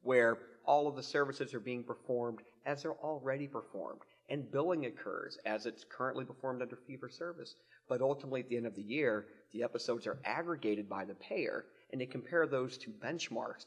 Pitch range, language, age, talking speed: 110-135 Hz, English, 30-49, 185 wpm